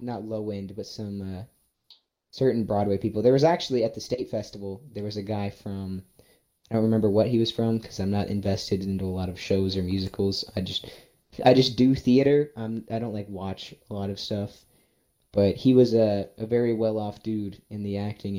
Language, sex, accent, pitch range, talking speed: English, male, American, 100-120 Hz, 210 wpm